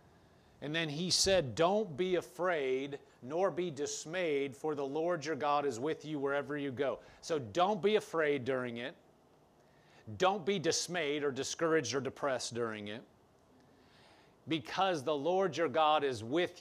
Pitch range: 140-170 Hz